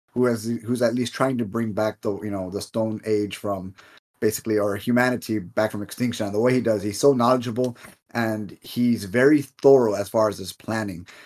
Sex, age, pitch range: male, 30-49, 105-130 Hz